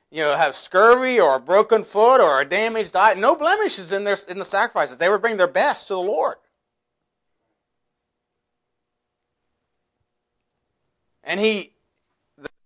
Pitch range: 155-250 Hz